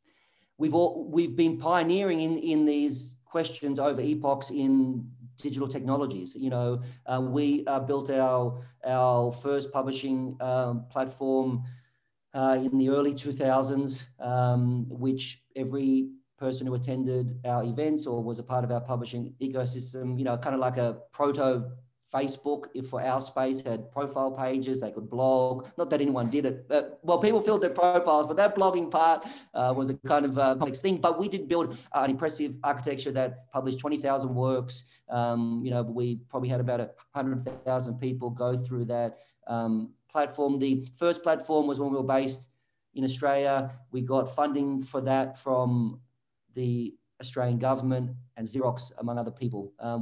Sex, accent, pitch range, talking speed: male, Australian, 125-140 Hz, 165 wpm